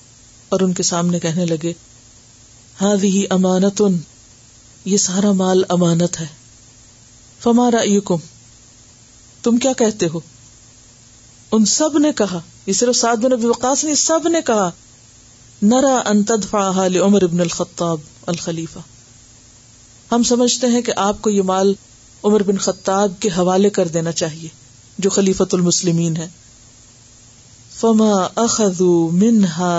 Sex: female